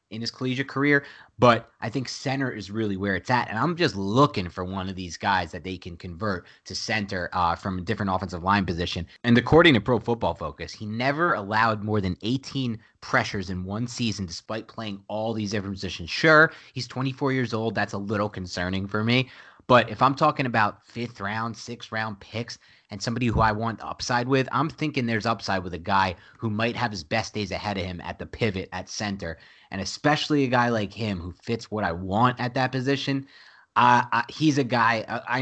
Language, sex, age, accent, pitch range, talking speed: English, male, 30-49, American, 100-125 Hz, 210 wpm